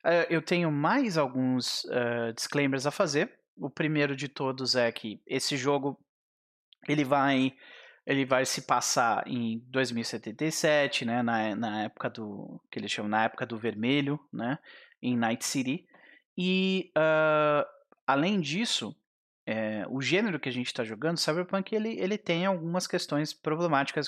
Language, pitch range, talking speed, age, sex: Portuguese, 135-170 Hz, 140 wpm, 30-49, male